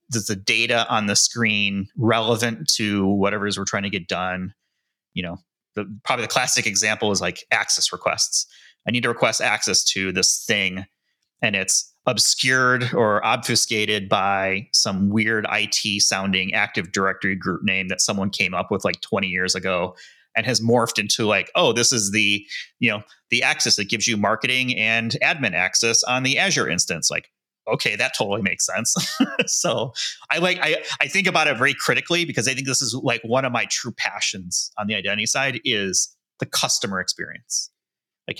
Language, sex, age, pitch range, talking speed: English, male, 30-49, 105-125 Hz, 185 wpm